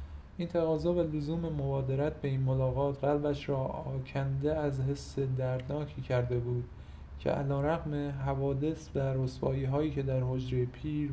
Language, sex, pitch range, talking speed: Persian, male, 120-145 Hz, 140 wpm